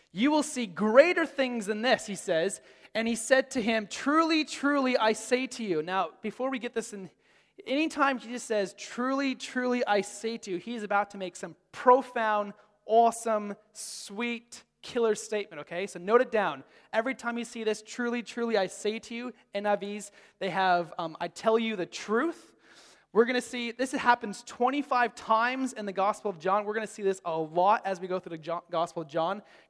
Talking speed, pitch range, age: 205 wpm, 190-245 Hz, 20-39